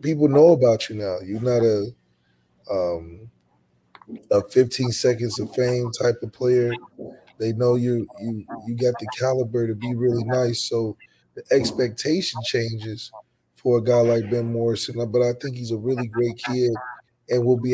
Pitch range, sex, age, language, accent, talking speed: 115-125 Hz, male, 20-39, English, American, 170 wpm